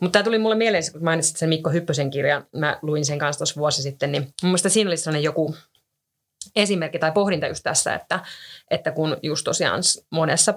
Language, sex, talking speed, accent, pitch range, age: Finnish, female, 185 wpm, native, 150-180 Hz, 30-49